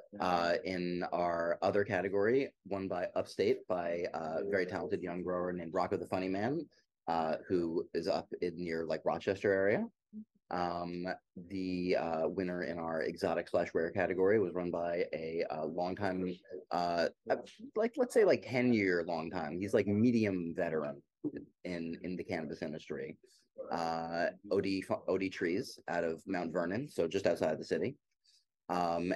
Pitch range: 85-100 Hz